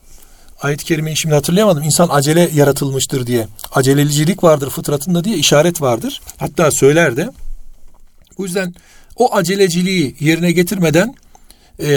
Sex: male